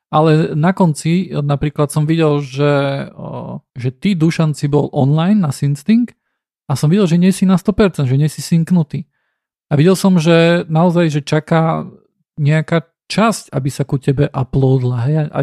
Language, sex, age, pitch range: Slovak, male, 40-59, 140-165 Hz